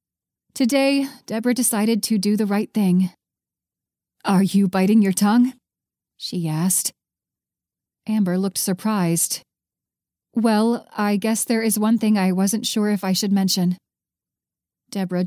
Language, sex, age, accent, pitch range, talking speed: English, female, 30-49, American, 190-225 Hz, 130 wpm